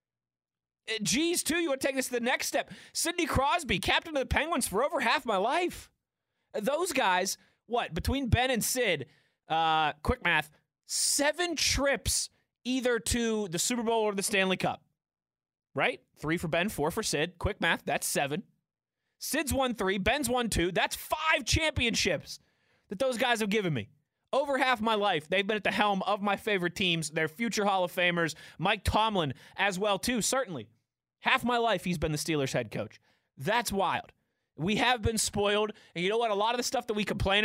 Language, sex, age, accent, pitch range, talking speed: English, male, 20-39, American, 155-225 Hz, 195 wpm